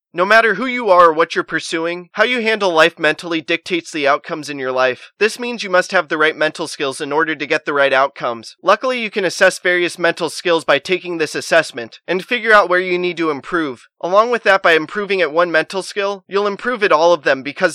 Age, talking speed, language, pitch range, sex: 20-39, 240 wpm, English, 140-195 Hz, male